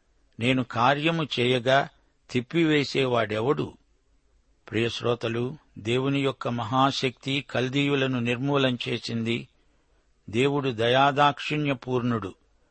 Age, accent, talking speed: 60-79, native, 60 wpm